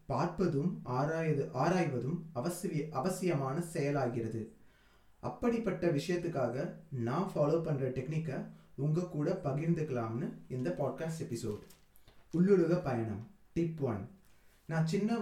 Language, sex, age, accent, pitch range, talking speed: Tamil, male, 20-39, native, 135-170 Hz, 95 wpm